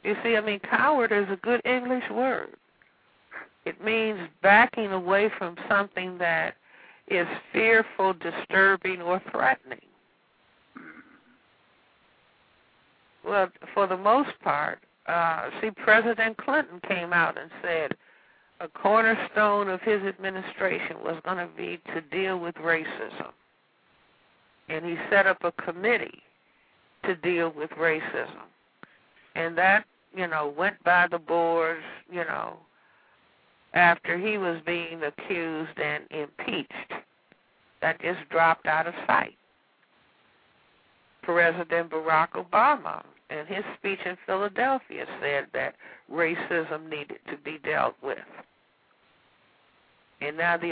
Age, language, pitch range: 60-79, English, 165-205 Hz